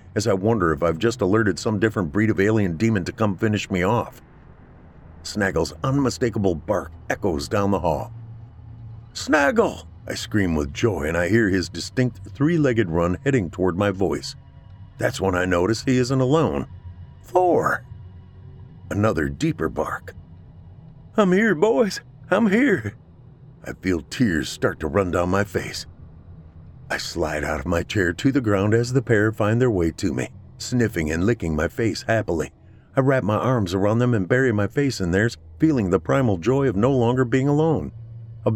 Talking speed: 175 wpm